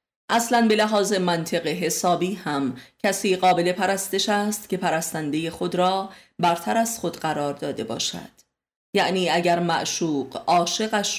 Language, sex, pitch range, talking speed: Persian, female, 155-190 Hz, 130 wpm